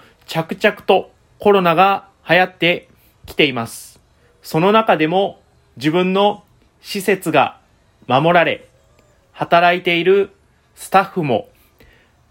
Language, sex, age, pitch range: Japanese, male, 30-49, 150-195 Hz